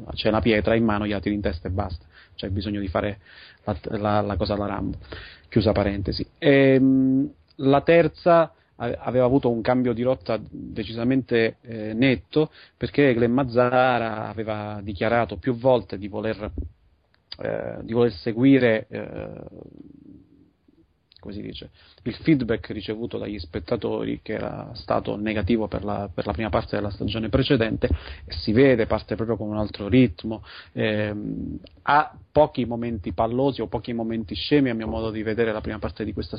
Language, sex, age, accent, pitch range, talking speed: Italian, male, 30-49, native, 105-120 Hz, 155 wpm